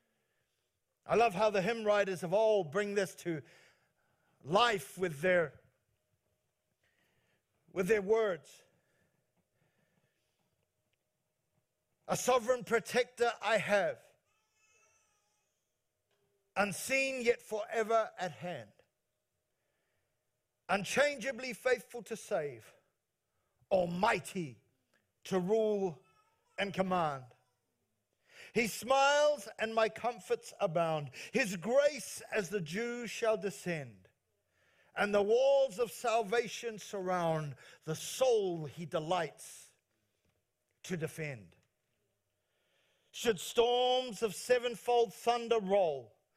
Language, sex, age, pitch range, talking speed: English, male, 50-69, 170-235 Hz, 85 wpm